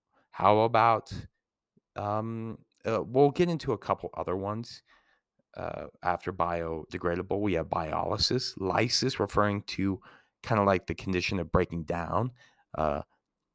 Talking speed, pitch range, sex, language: 130 wpm, 85-100 Hz, male, English